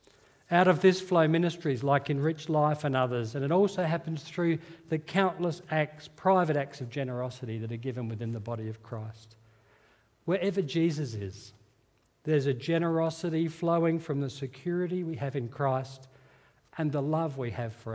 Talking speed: 165 wpm